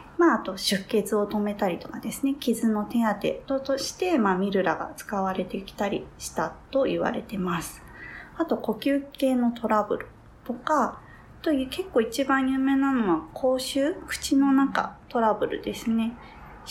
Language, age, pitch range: Japanese, 20-39, 195-270 Hz